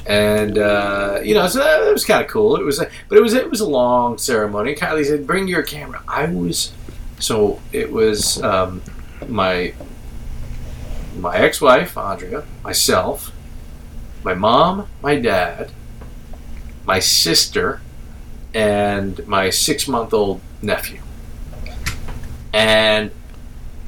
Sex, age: male, 40-59